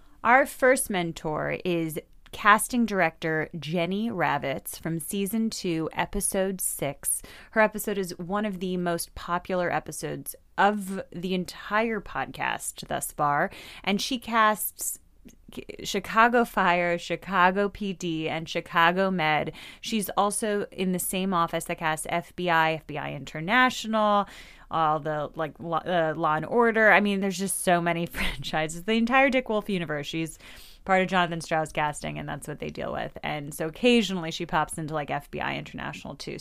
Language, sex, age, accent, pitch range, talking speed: English, female, 30-49, American, 165-215 Hz, 150 wpm